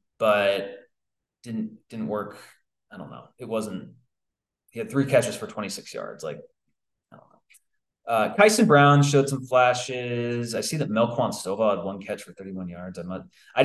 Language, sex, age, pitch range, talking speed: English, male, 20-39, 110-145 Hz, 170 wpm